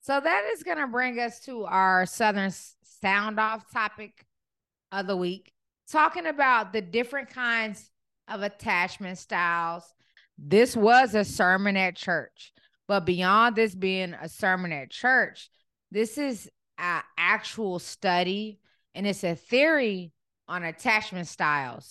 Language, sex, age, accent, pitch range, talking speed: English, female, 20-39, American, 160-220 Hz, 135 wpm